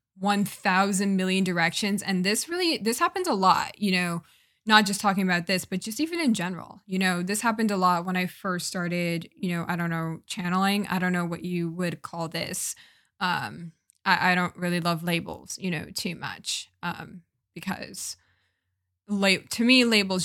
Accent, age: American, 10-29